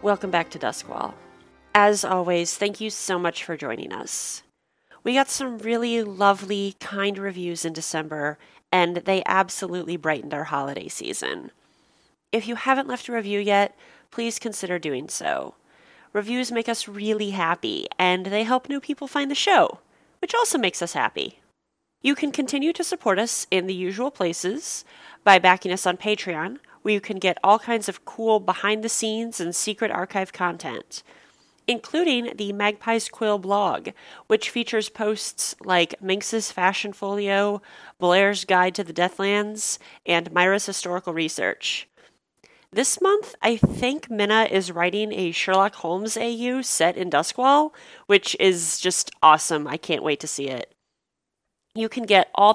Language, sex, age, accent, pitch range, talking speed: English, female, 30-49, American, 180-230 Hz, 155 wpm